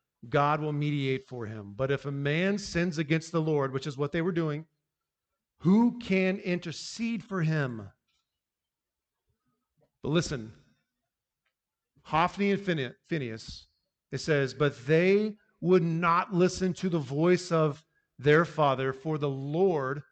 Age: 40-59